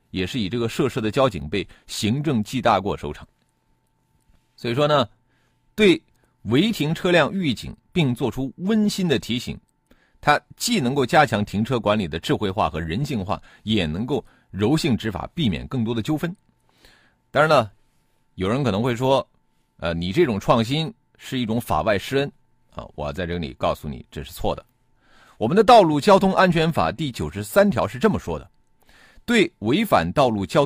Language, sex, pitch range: Chinese, male, 95-145 Hz